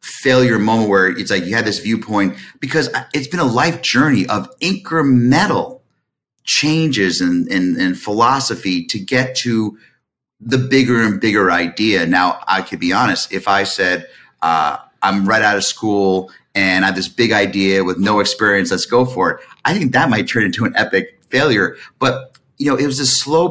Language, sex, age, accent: English, male, 30-49, American